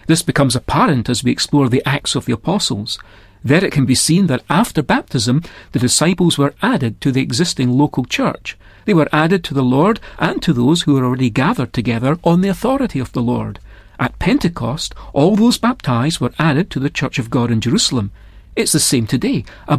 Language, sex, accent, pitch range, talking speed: English, male, British, 130-185 Hz, 205 wpm